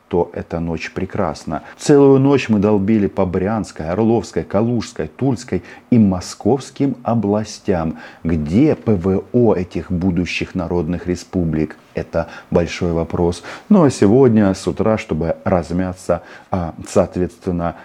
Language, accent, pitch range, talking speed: Russian, native, 85-110 Hz, 110 wpm